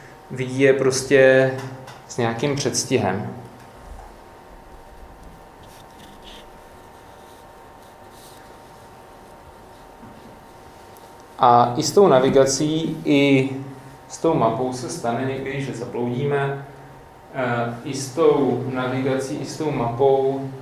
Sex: male